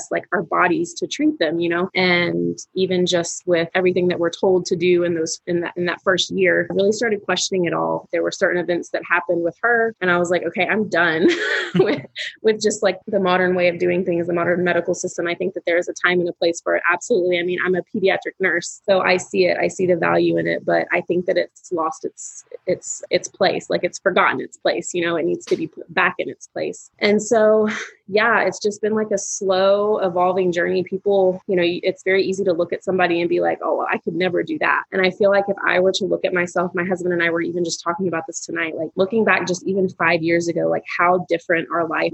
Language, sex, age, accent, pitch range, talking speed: English, female, 20-39, American, 175-195 Hz, 260 wpm